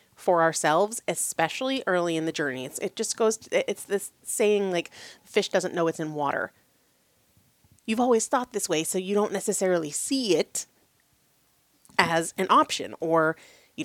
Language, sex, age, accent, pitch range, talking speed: English, female, 30-49, American, 160-200 Hz, 170 wpm